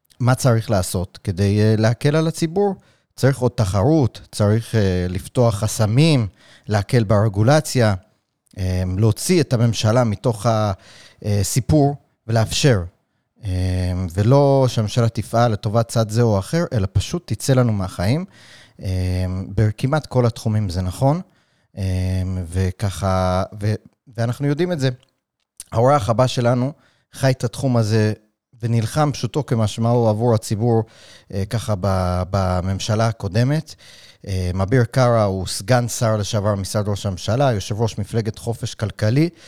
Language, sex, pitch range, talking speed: Hebrew, male, 105-130 Hz, 120 wpm